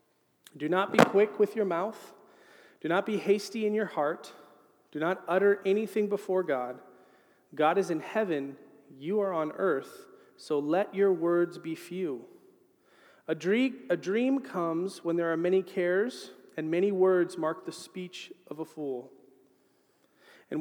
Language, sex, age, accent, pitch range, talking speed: English, male, 40-59, American, 155-210 Hz, 150 wpm